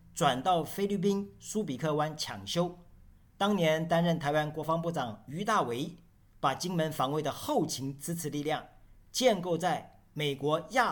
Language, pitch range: Chinese, 140-185 Hz